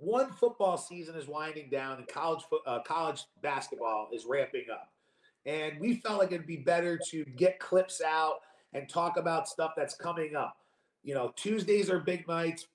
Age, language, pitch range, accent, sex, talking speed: 30-49, English, 155-205 Hz, American, male, 190 wpm